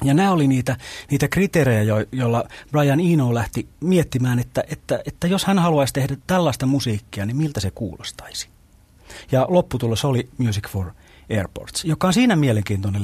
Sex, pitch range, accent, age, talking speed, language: male, 100-150 Hz, native, 30-49, 155 wpm, Finnish